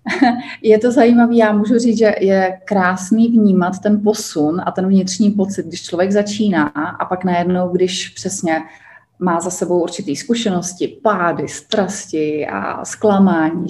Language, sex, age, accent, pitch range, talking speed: Czech, female, 30-49, native, 175-205 Hz, 145 wpm